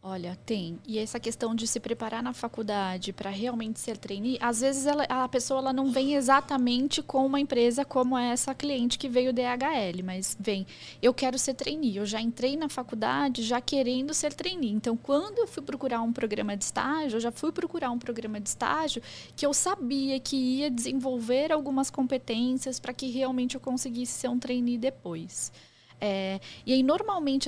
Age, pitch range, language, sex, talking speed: 10-29, 230-280 Hz, Portuguese, female, 185 wpm